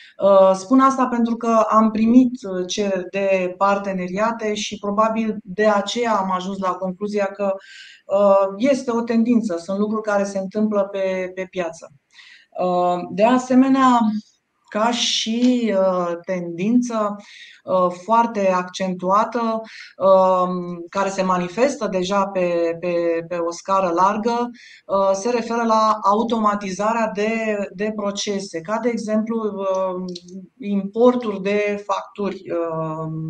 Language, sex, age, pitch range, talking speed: Romanian, female, 20-39, 190-225 Hz, 105 wpm